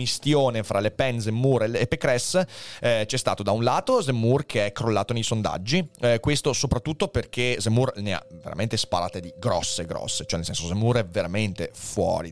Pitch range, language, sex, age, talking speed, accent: 105-145 Hz, Italian, male, 30-49, 180 wpm, native